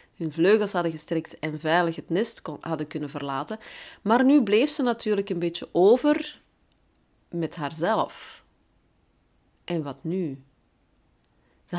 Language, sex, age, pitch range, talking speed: Dutch, female, 30-49, 165-230 Hz, 130 wpm